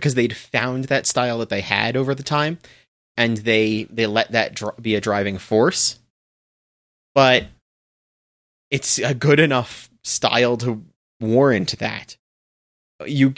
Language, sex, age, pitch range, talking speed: English, male, 30-49, 110-130 Hz, 140 wpm